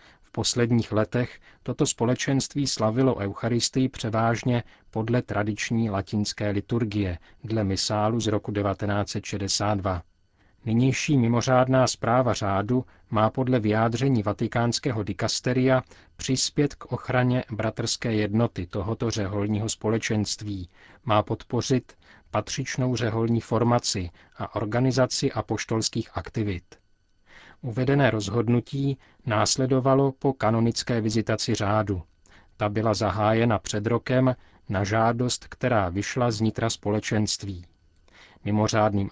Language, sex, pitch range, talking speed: Czech, male, 105-125 Hz, 95 wpm